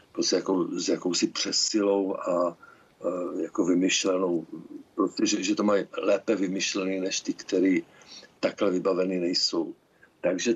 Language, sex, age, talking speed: Czech, male, 50-69, 120 wpm